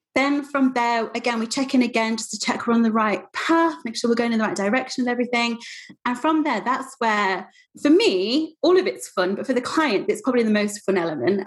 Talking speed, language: 245 wpm, English